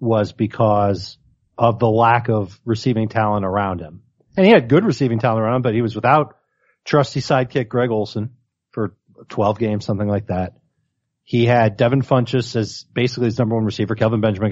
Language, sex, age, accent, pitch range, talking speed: English, male, 40-59, American, 110-135 Hz, 180 wpm